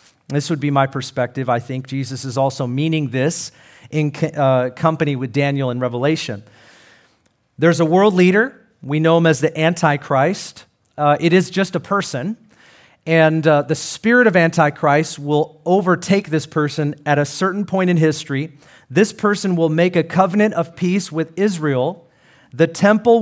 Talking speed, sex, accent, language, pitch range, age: 165 wpm, male, American, English, 145-200 Hz, 40-59